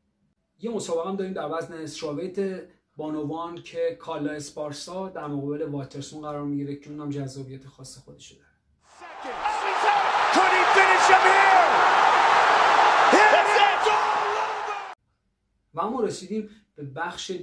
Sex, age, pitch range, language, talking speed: male, 30-49, 150-205 Hz, Persian, 95 wpm